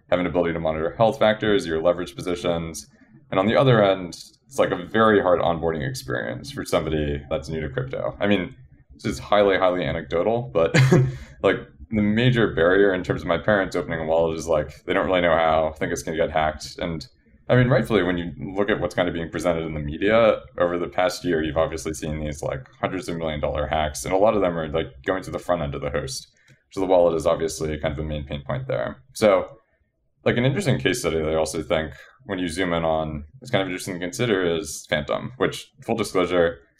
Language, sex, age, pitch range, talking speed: English, male, 20-39, 80-105 Hz, 230 wpm